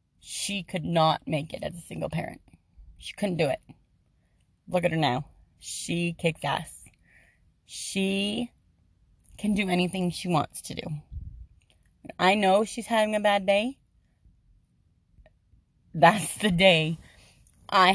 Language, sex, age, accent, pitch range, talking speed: English, female, 30-49, American, 155-200 Hz, 130 wpm